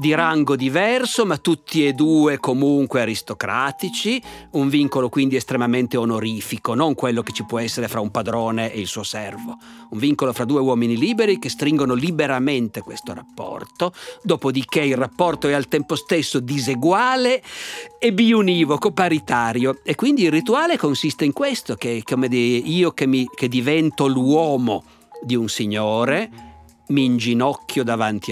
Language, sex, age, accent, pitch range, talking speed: Italian, male, 50-69, native, 120-160 Hz, 145 wpm